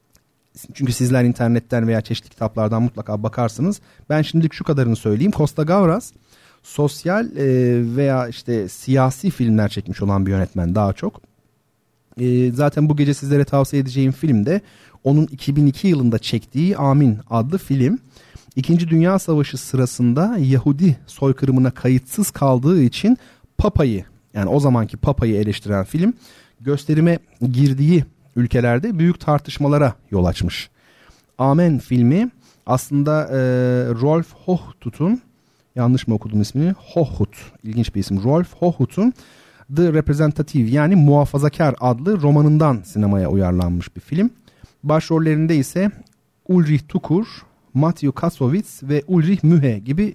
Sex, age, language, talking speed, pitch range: male, 40-59, Turkish, 120 wpm, 120-160 Hz